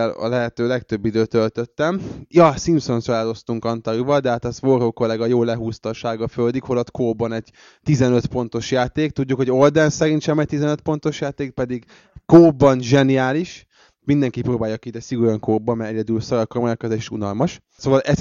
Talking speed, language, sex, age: 165 wpm, Hungarian, male, 20-39